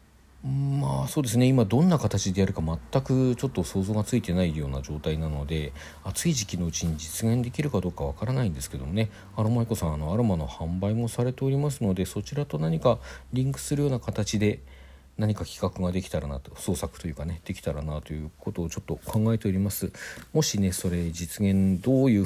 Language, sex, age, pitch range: Japanese, male, 50-69, 80-120 Hz